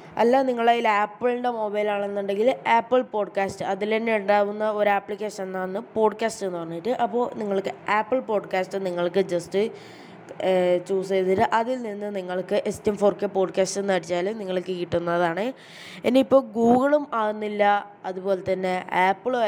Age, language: 20-39, Malayalam